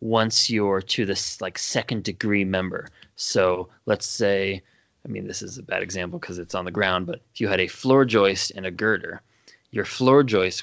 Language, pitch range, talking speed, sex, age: English, 100-120 Hz, 205 wpm, male, 20-39